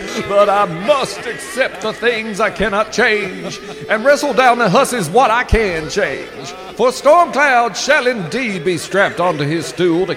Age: 50-69